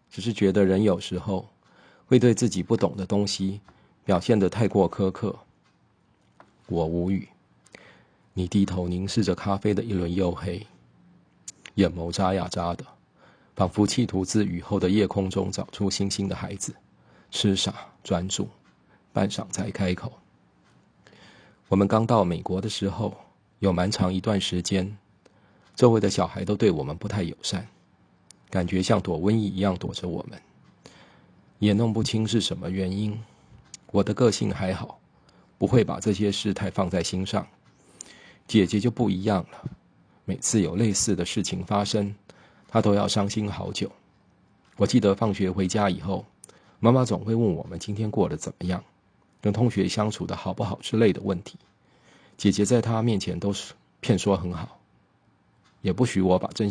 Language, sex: Chinese, male